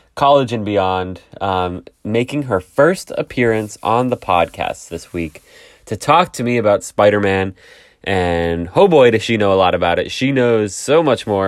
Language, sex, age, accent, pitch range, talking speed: English, male, 20-39, American, 90-115 Hz, 185 wpm